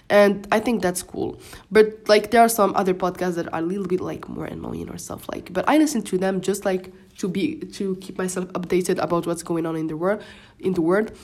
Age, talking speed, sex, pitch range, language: 20-39, 245 wpm, female, 170-210 Hz, English